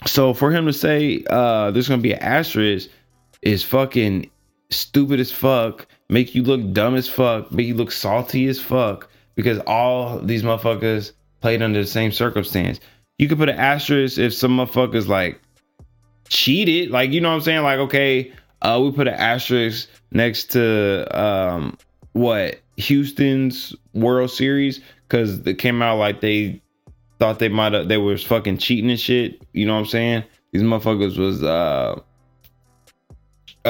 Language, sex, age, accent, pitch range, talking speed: English, male, 20-39, American, 110-135 Hz, 165 wpm